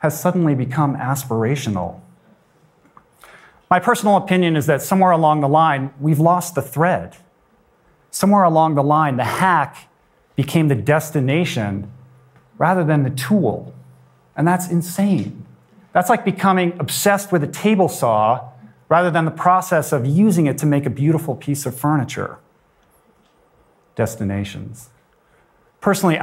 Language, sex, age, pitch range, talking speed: English, male, 40-59, 120-155 Hz, 130 wpm